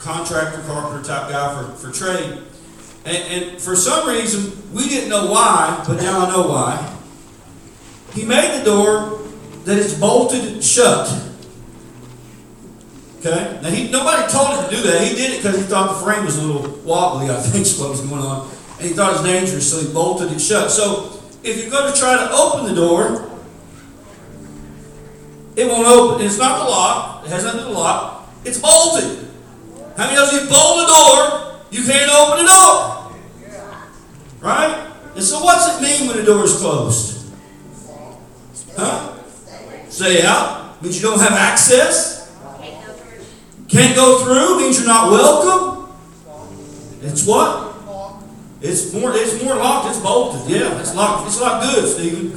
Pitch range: 160-245 Hz